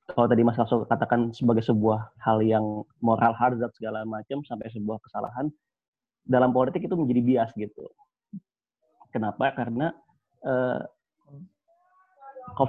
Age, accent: 30-49, native